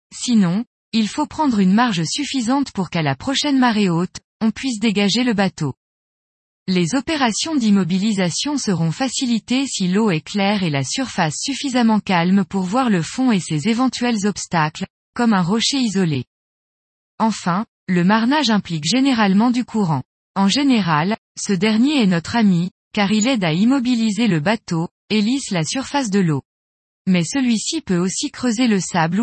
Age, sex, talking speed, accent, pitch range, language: 20-39, female, 160 wpm, French, 175-245 Hz, French